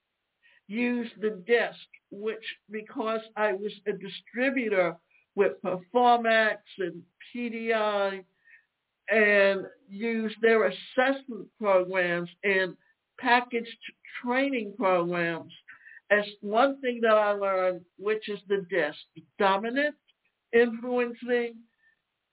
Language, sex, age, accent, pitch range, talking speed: English, male, 60-79, American, 185-240 Hz, 90 wpm